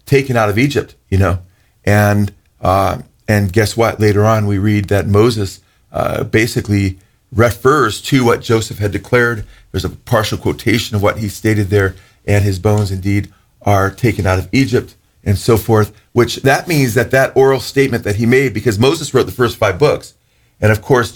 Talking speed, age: 185 wpm, 40-59